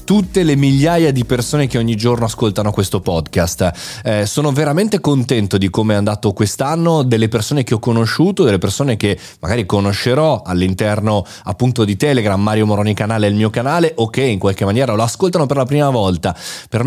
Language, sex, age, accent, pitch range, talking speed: Italian, male, 30-49, native, 105-140 Hz, 190 wpm